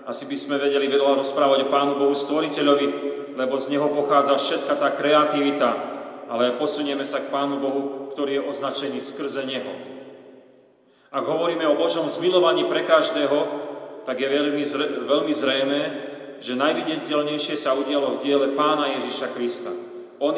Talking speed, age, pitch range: 150 wpm, 40-59, 135-150 Hz